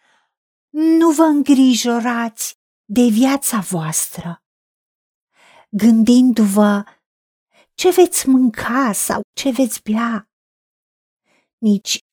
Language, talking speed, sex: Romanian, 75 wpm, female